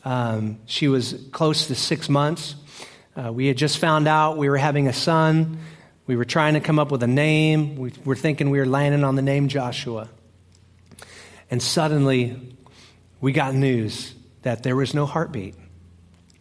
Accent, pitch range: American, 115-140 Hz